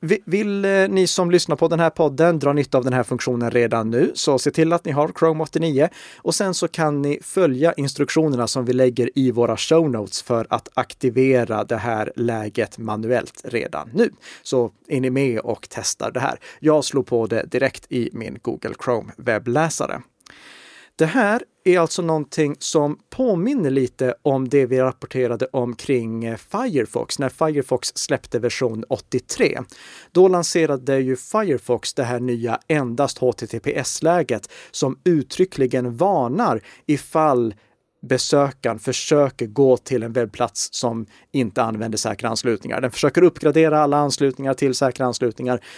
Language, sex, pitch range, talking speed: Swedish, male, 120-155 Hz, 155 wpm